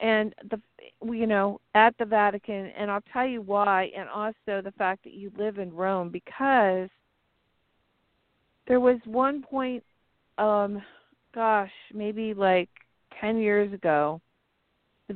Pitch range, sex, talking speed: 185-215 Hz, female, 135 wpm